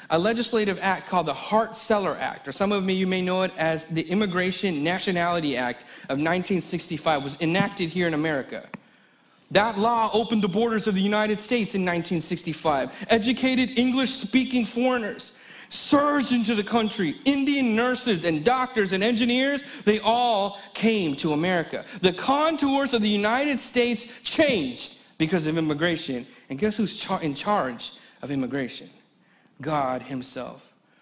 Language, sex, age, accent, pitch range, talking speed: English, male, 40-59, American, 170-250 Hz, 145 wpm